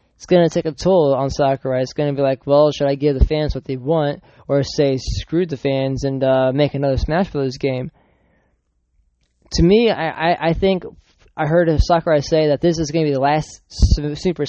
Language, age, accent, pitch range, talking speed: English, 20-39, American, 140-175 Hz, 220 wpm